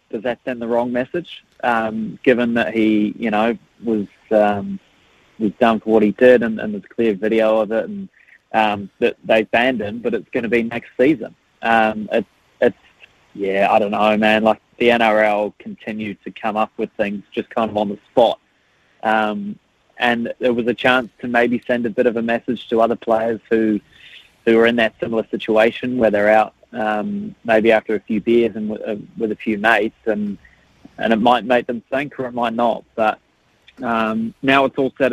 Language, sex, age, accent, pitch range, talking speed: English, male, 20-39, Australian, 105-120 Hz, 205 wpm